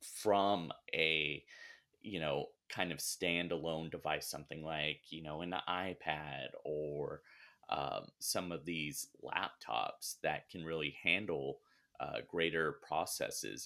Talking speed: 120 wpm